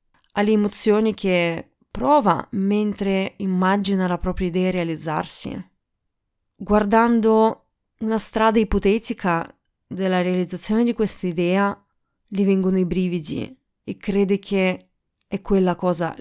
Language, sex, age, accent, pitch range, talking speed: Italian, female, 30-49, native, 180-225 Hz, 105 wpm